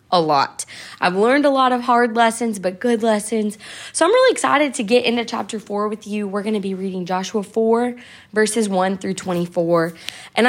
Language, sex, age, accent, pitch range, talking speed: English, female, 20-39, American, 180-235 Hz, 200 wpm